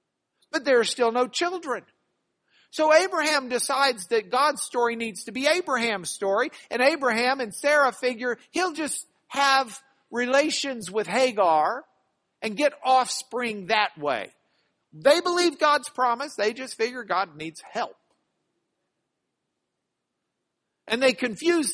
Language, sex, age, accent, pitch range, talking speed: English, male, 50-69, American, 220-275 Hz, 125 wpm